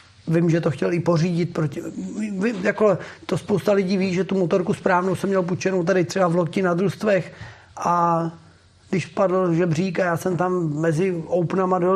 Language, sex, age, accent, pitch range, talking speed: Czech, male, 30-49, native, 160-185 Hz, 185 wpm